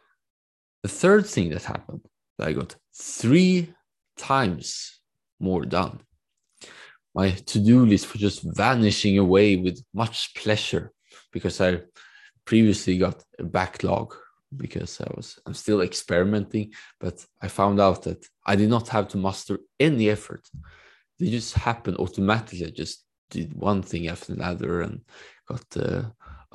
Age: 20-39